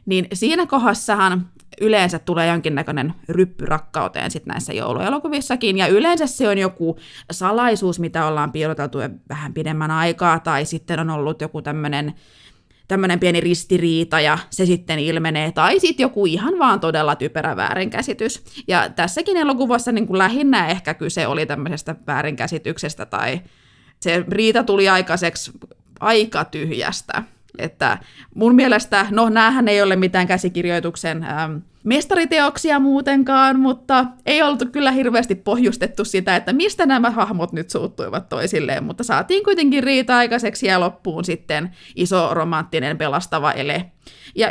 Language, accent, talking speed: Finnish, native, 135 wpm